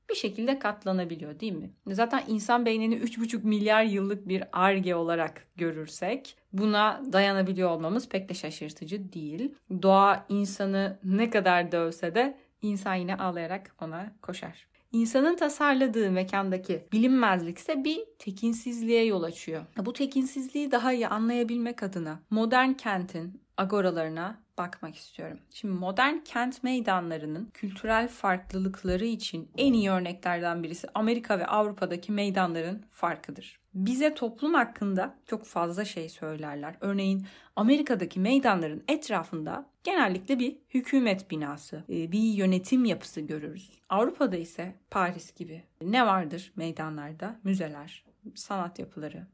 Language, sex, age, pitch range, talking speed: Turkish, female, 30-49, 180-235 Hz, 120 wpm